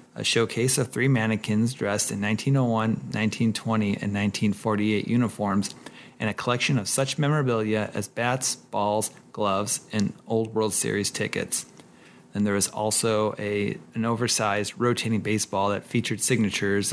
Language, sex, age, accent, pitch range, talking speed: English, male, 30-49, American, 100-115 Hz, 140 wpm